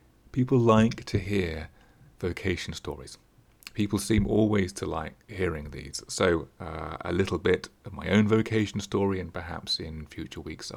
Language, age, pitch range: English, 30-49, 80-110 Hz